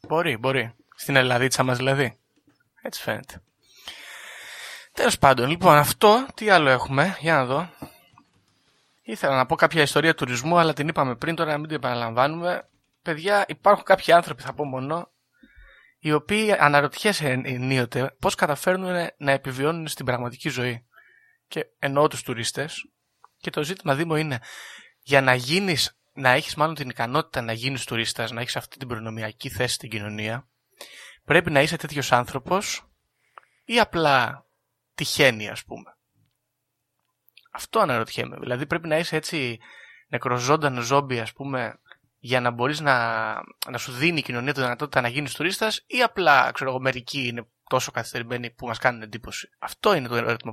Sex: male